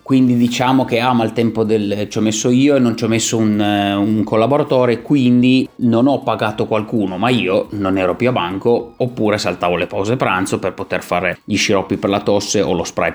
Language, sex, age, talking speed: Italian, male, 30-49, 220 wpm